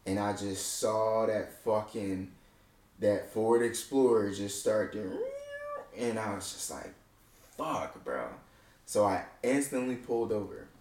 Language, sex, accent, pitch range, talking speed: English, male, American, 95-110 Hz, 135 wpm